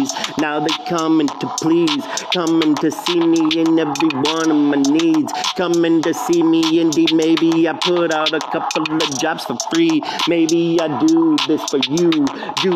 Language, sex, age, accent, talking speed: English, male, 40-59, American, 175 wpm